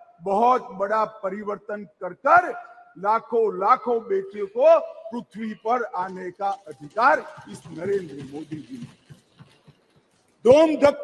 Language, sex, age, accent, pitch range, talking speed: Hindi, male, 50-69, native, 215-300 Hz, 105 wpm